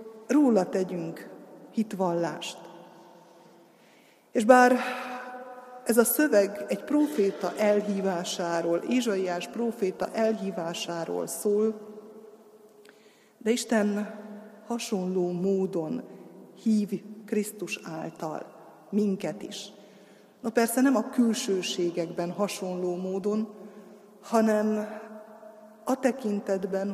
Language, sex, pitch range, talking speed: Hungarian, female, 185-220 Hz, 75 wpm